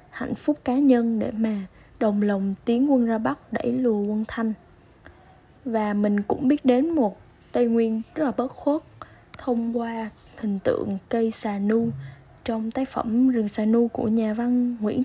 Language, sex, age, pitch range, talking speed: Vietnamese, female, 10-29, 210-250 Hz, 180 wpm